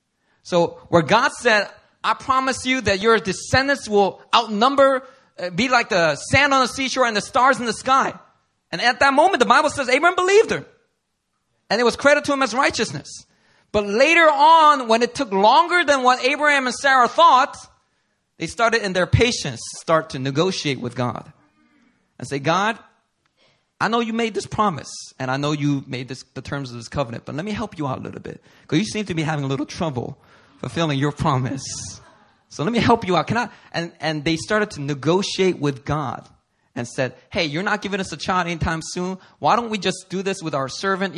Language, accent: English, American